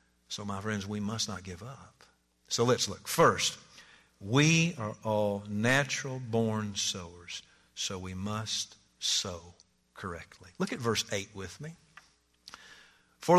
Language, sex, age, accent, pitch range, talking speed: English, male, 50-69, American, 110-175 Hz, 135 wpm